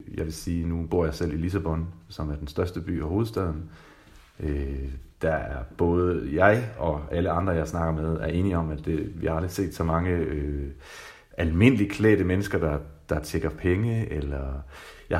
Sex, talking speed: male, 190 wpm